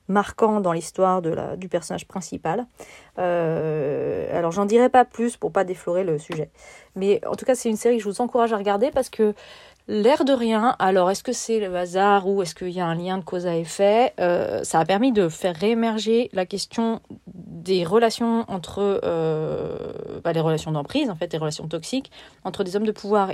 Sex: female